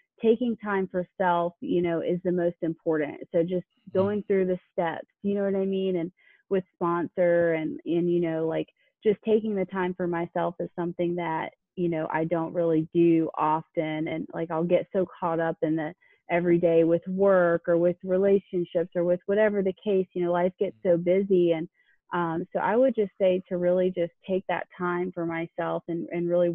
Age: 30-49